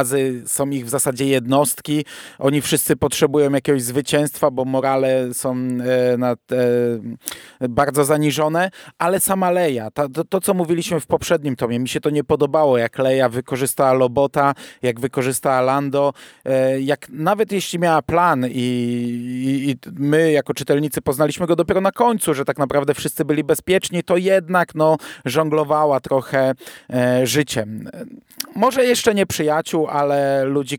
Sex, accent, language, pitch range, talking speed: male, native, Polish, 125-155 Hz, 150 wpm